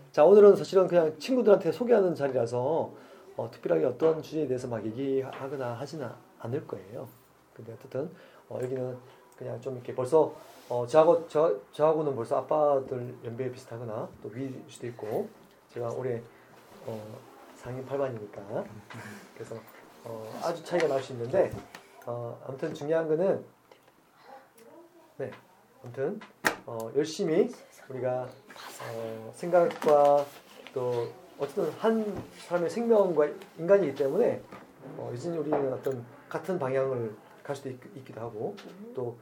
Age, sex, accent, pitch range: 30-49, male, native, 125-160 Hz